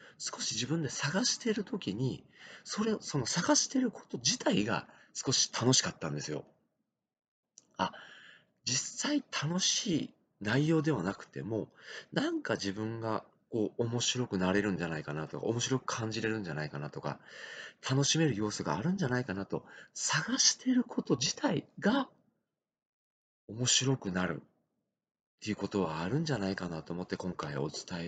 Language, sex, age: Japanese, male, 40-59